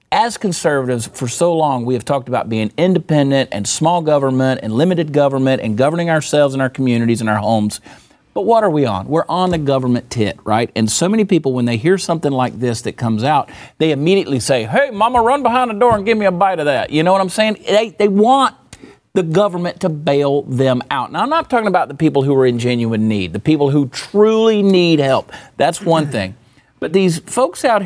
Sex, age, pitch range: male, 40-59, 125-190 Hz